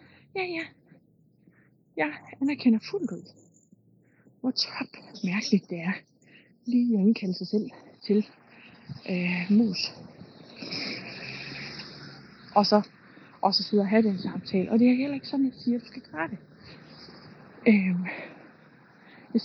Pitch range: 190-235 Hz